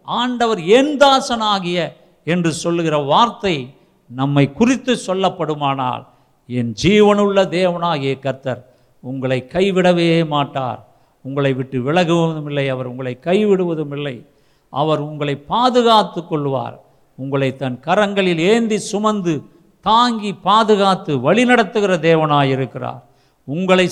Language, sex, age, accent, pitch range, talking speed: Tamil, male, 50-69, native, 140-190 Hz, 100 wpm